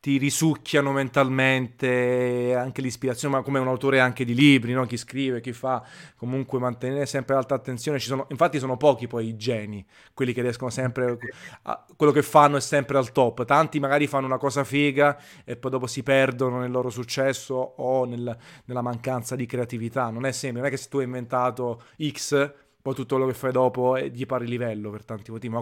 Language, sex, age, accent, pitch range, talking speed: Italian, male, 30-49, native, 125-145 Hz, 205 wpm